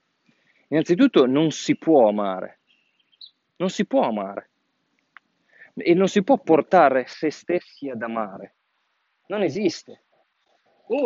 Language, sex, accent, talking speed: Italian, male, native, 115 wpm